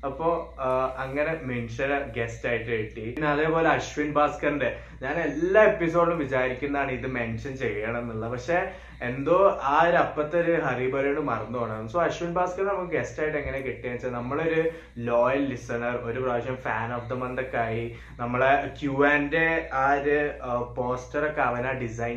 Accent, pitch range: native, 120-145 Hz